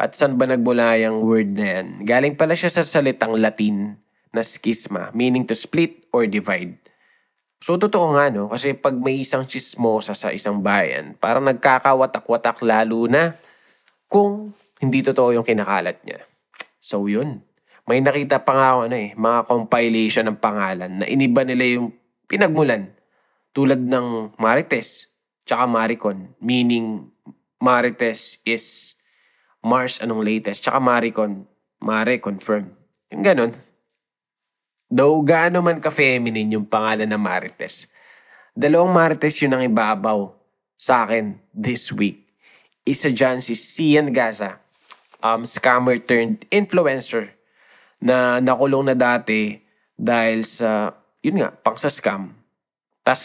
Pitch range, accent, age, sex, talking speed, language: 110-135 Hz, native, 20-39, male, 130 wpm, Filipino